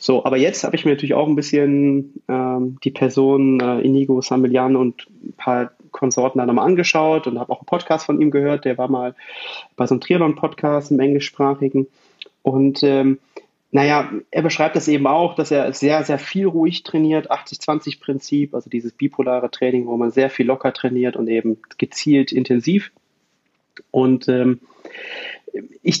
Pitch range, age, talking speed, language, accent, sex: 130-155 Hz, 30-49, 165 wpm, German, German, male